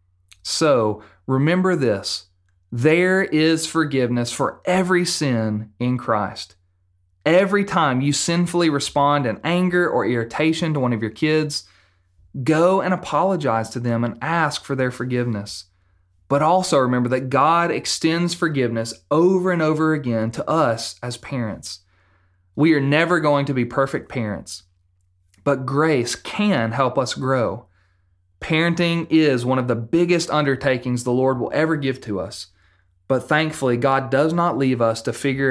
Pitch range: 110-160 Hz